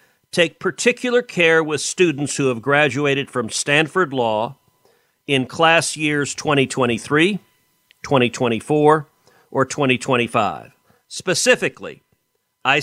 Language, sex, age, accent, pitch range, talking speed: English, male, 50-69, American, 130-160 Hz, 95 wpm